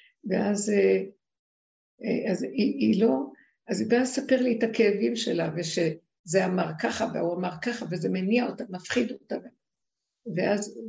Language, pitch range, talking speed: Hebrew, 190-240 Hz, 130 wpm